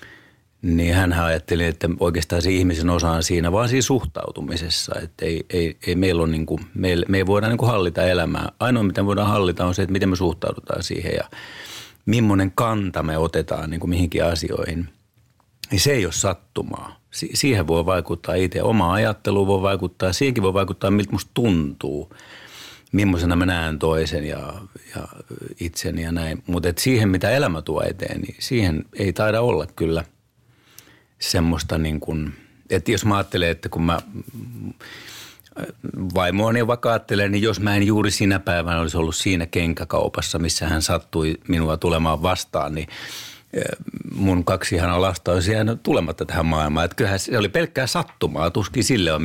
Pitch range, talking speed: 85-105 Hz, 160 wpm